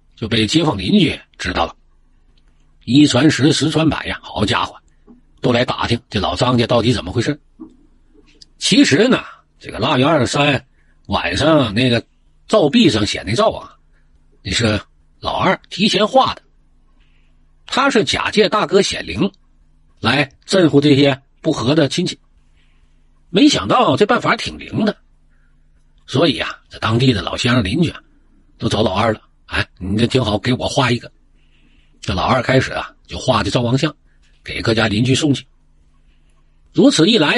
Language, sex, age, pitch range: Chinese, male, 50-69, 95-150 Hz